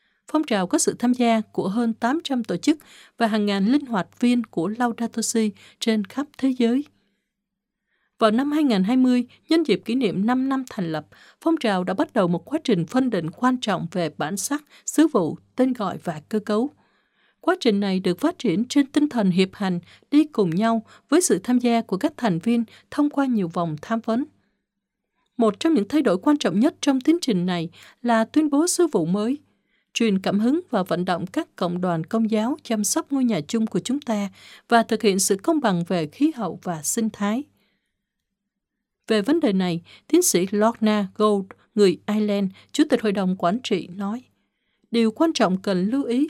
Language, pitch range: Vietnamese, 195-265 Hz